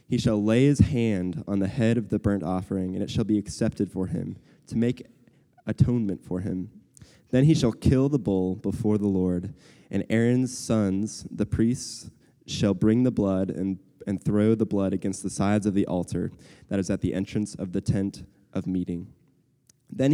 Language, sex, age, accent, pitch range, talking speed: English, male, 20-39, American, 95-120 Hz, 190 wpm